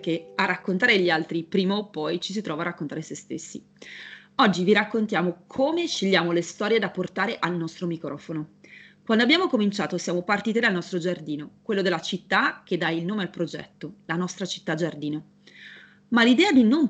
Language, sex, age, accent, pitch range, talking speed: Italian, female, 30-49, native, 165-210 Hz, 185 wpm